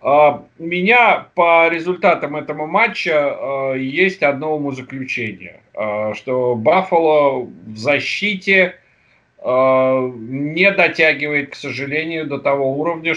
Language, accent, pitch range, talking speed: Russian, native, 135-175 Hz, 110 wpm